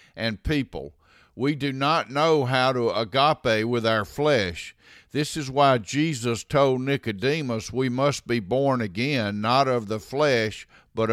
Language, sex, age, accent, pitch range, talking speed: English, male, 50-69, American, 115-145 Hz, 150 wpm